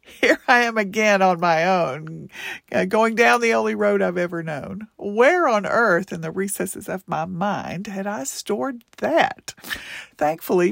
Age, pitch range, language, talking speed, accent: 50-69, 170-220 Hz, English, 160 wpm, American